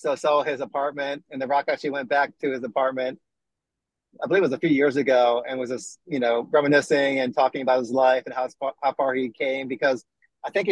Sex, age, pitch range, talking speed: male, 30-49, 125-145 Hz, 240 wpm